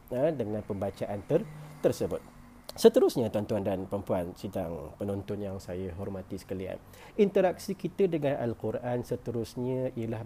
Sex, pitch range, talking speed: male, 105-125 Hz, 115 wpm